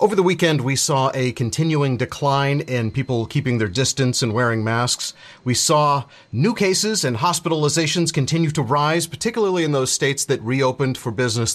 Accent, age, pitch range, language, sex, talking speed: American, 30-49, 125-165 Hz, English, male, 170 wpm